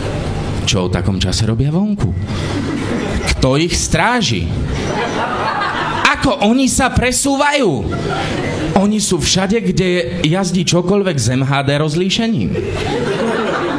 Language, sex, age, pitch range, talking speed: English, male, 30-49, 155-220 Hz, 90 wpm